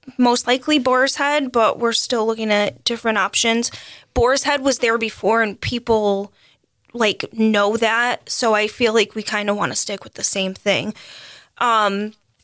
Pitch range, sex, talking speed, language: 220-265 Hz, female, 175 wpm, English